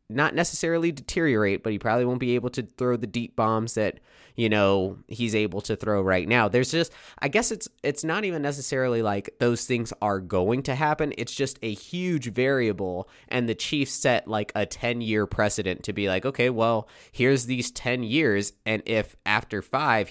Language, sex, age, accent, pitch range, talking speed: English, male, 20-39, American, 100-130 Hz, 195 wpm